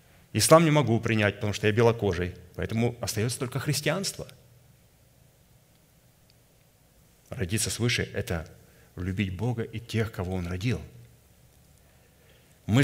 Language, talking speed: Russian, 105 wpm